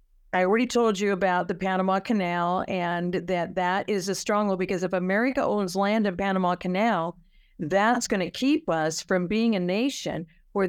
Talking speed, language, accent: 180 wpm, English, American